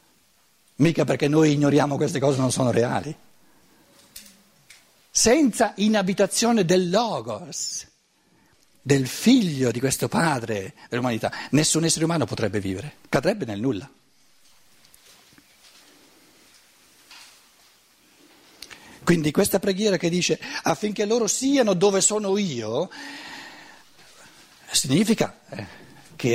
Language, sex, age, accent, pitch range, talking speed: Italian, male, 60-79, native, 115-180 Hz, 90 wpm